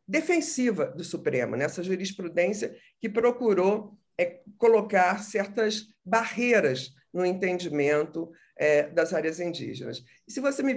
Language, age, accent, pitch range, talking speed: Portuguese, 50-69, Brazilian, 175-215 Hz, 125 wpm